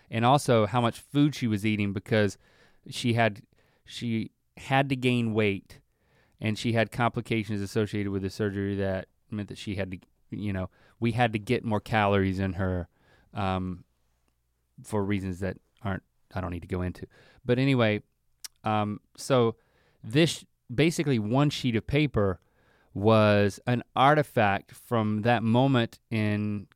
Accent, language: American, English